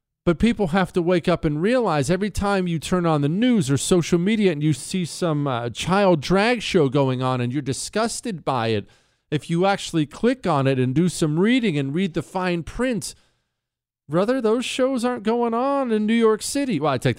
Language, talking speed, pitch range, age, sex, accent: English, 215 wpm, 130-215 Hz, 40-59, male, American